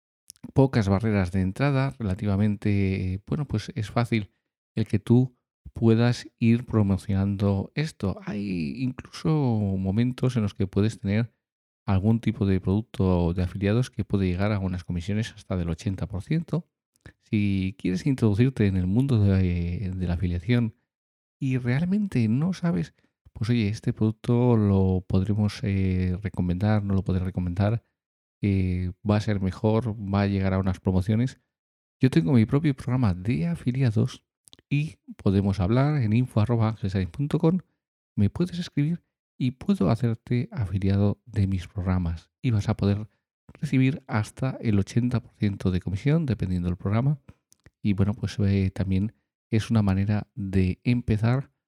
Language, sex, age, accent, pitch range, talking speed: Spanish, male, 40-59, Spanish, 95-120 Hz, 140 wpm